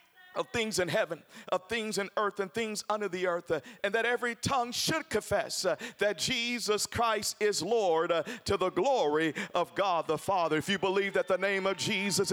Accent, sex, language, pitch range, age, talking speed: American, male, English, 165-230 Hz, 50-69, 190 wpm